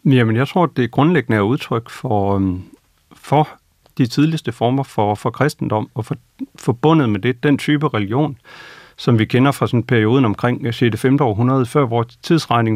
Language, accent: Danish, native